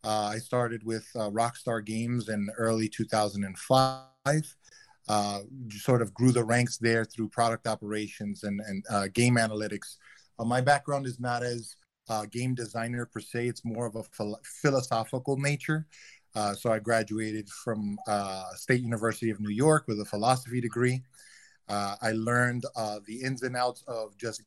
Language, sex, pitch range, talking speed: English, male, 105-125 Hz, 165 wpm